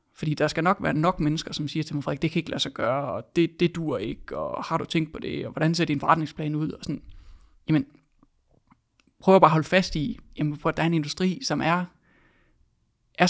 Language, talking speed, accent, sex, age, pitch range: Danish, 245 wpm, native, male, 20-39, 150-175 Hz